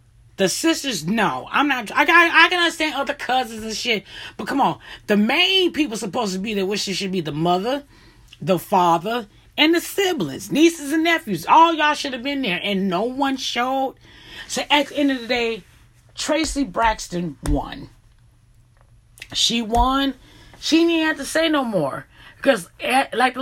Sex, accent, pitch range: female, American, 190-285 Hz